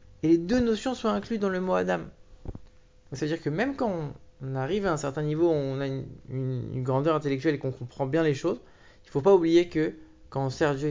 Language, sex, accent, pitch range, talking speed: English, male, French, 135-175 Hz, 240 wpm